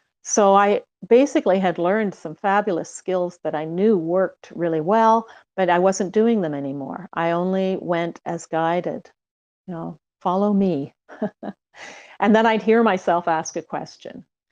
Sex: female